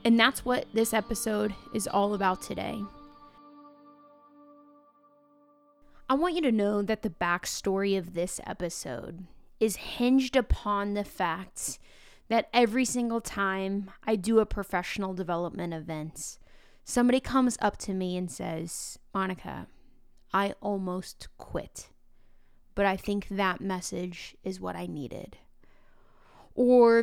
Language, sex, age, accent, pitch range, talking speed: English, female, 20-39, American, 190-230 Hz, 125 wpm